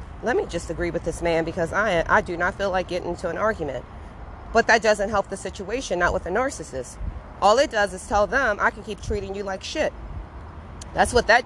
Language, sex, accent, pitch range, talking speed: English, female, American, 145-210 Hz, 230 wpm